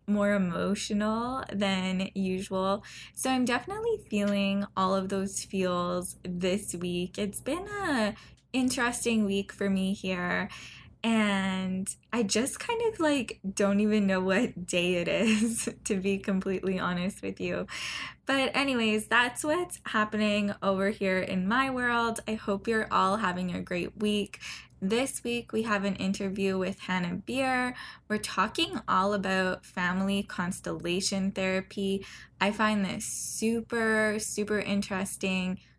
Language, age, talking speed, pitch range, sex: English, 10-29, 135 wpm, 190-225 Hz, female